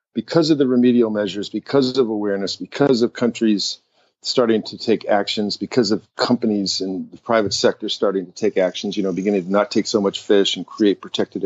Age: 50-69